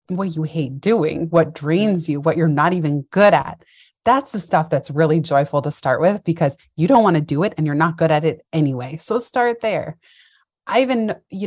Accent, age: American, 30-49